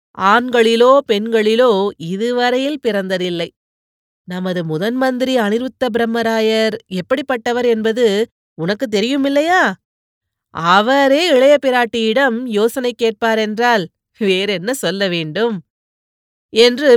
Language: Tamil